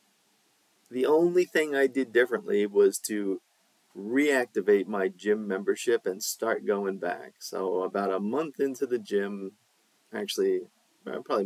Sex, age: male, 30-49